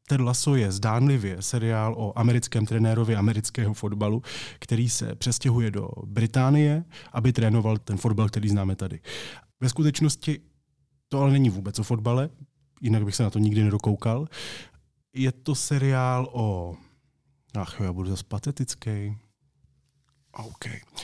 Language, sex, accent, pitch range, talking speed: Czech, male, native, 105-130 Hz, 130 wpm